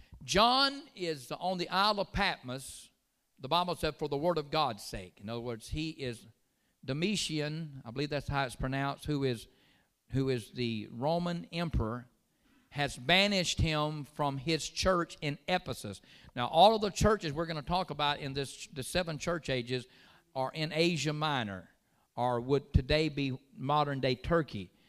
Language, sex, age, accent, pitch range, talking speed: English, male, 50-69, American, 120-155 Hz, 165 wpm